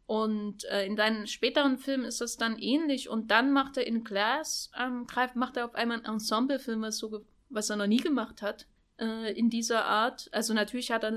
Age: 10-29